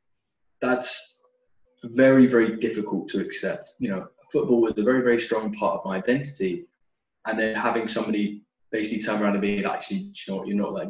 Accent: British